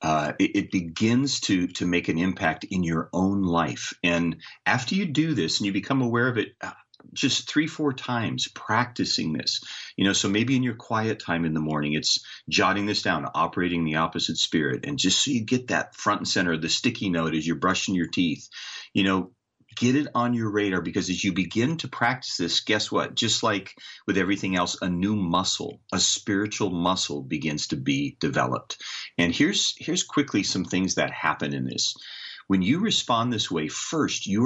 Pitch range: 85-120 Hz